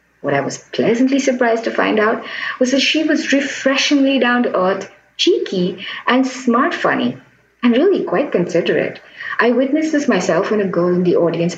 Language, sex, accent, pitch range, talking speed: English, female, Indian, 170-255 Hz, 175 wpm